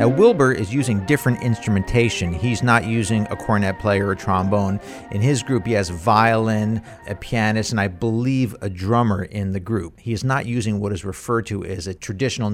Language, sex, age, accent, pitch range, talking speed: English, male, 50-69, American, 100-120 Hz, 195 wpm